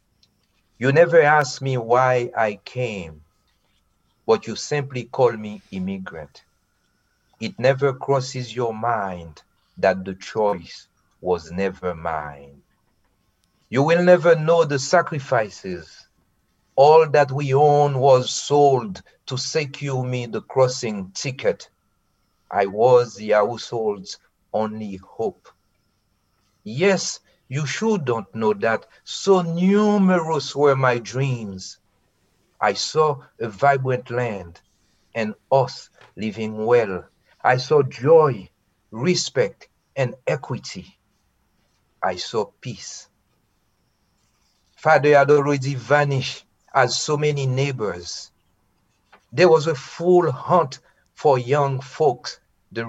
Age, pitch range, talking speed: 50-69, 105-150 Hz, 105 wpm